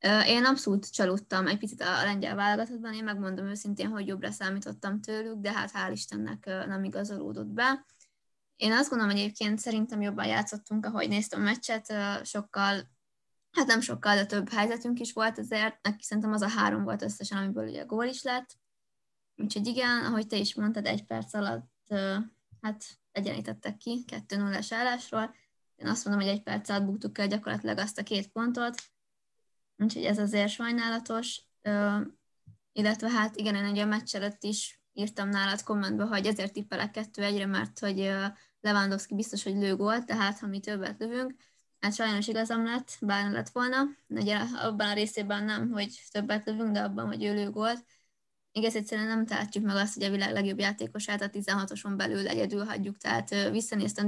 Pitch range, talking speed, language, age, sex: 200-220 Hz, 170 wpm, Hungarian, 20-39, female